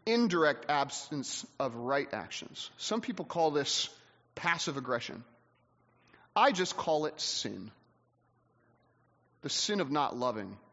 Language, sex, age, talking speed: English, male, 30-49, 115 wpm